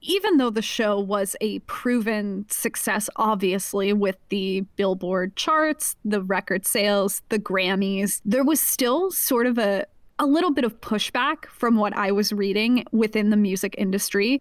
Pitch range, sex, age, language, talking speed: 200-245 Hz, female, 10-29, English, 160 wpm